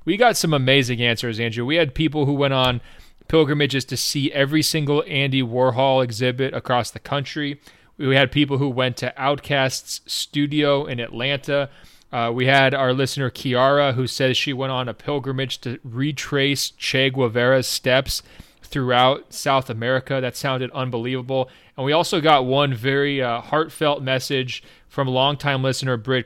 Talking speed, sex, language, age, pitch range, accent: 160 wpm, male, English, 30-49, 125-145 Hz, American